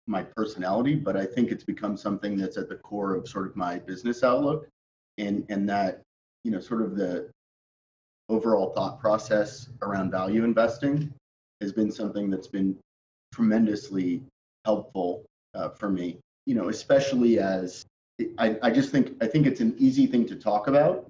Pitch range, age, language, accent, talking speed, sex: 95-115 Hz, 30-49, English, American, 170 wpm, male